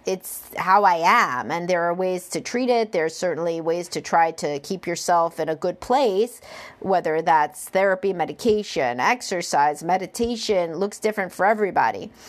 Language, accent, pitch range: English, American, 170-210 Hz